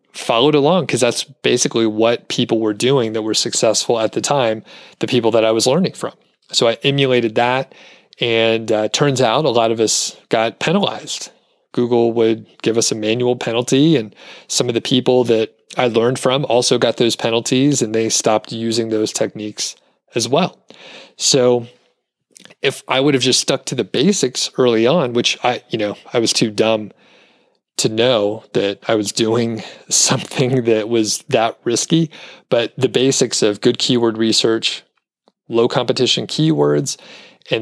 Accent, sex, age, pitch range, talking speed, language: American, male, 30-49, 110-125 Hz, 170 wpm, English